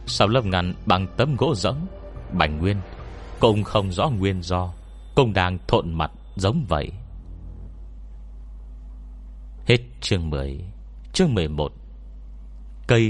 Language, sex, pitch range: Vietnamese, male, 75-110 Hz